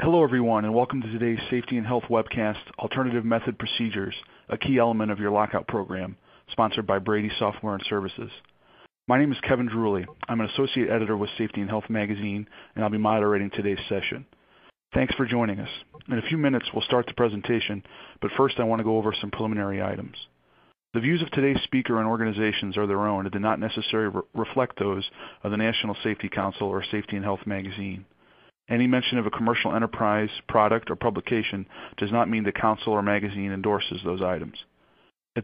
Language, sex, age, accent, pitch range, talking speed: English, male, 40-59, American, 100-120 Hz, 195 wpm